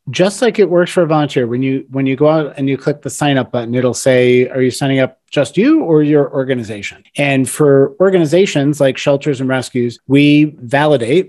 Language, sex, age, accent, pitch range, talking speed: English, male, 30-49, American, 130-155 Hz, 215 wpm